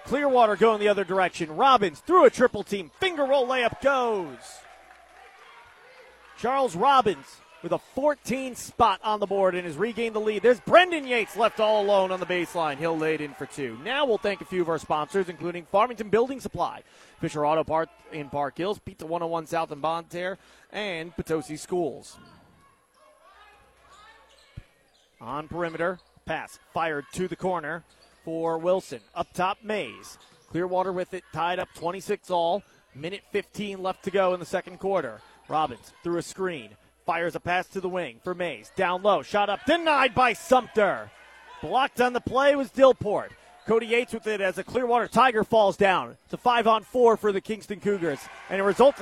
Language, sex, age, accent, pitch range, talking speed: English, male, 30-49, American, 175-240 Hz, 175 wpm